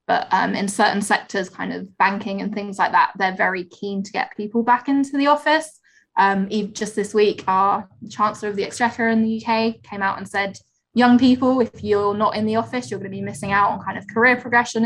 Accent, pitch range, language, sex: British, 200-235 Hz, English, female